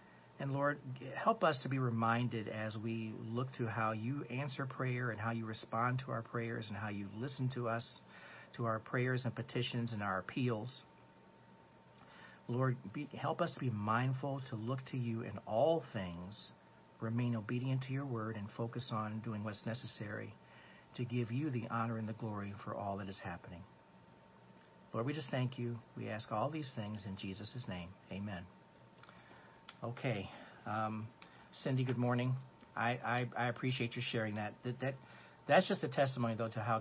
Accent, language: American, English